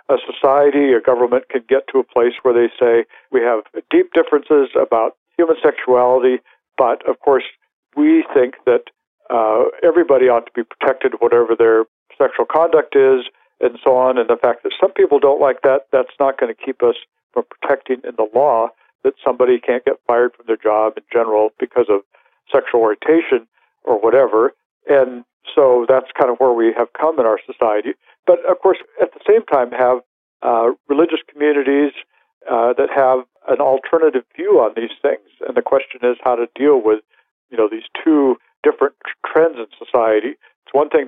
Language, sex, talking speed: English, male, 185 wpm